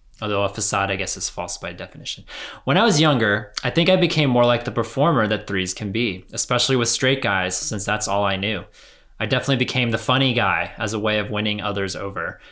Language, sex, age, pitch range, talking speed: English, male, 20-39, 100-120 Hz, 225 wpm